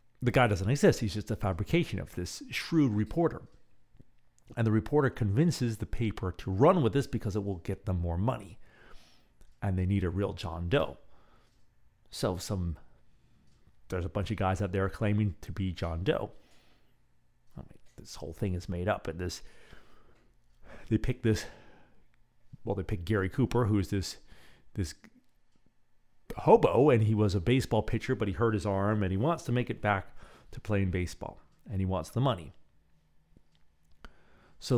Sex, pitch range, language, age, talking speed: male, 95-120 Hz, English, 40-59, 170 wpm